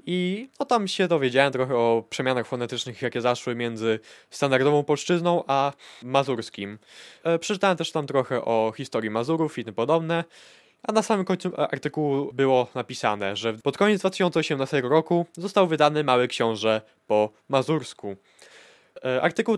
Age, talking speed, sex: 20-39, 135 wpm, male